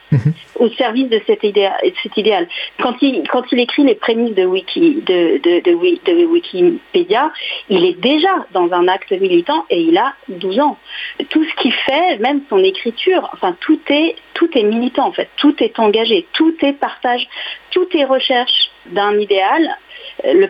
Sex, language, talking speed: female, French, 180 wpm